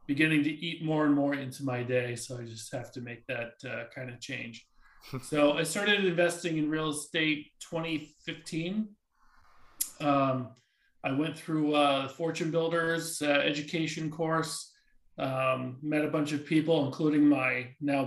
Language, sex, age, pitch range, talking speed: English, male, 40-59, 140-160 Hz, 155 wpm